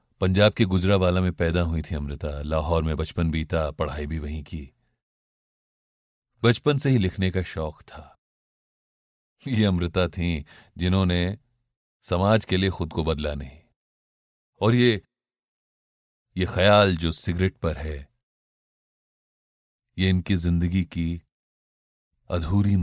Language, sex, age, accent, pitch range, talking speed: Hindi, male, 40-59, native, 80-100 Hz, 125 wpm